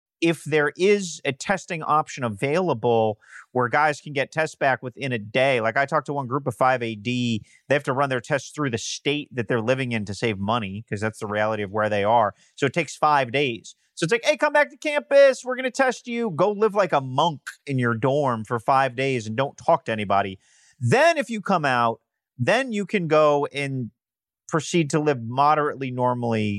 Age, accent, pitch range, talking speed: 30-49, American, 120-165 Hz, 220 wpm